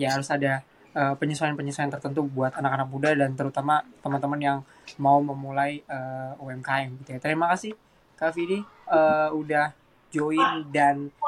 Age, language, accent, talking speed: 20-39, Indonesian, native, 135 wpm